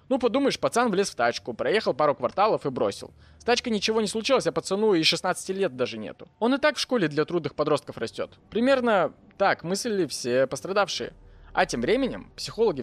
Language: Russian